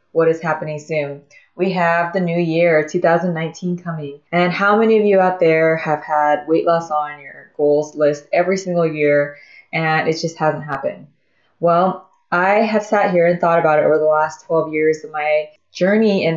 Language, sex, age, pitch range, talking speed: English, female, 20-39, 155-180 Hz, 190 wpm